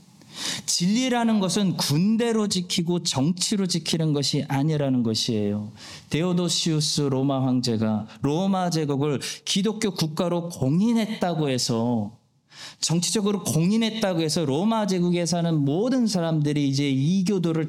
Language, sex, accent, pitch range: Korean, male, native, 120-175 Hz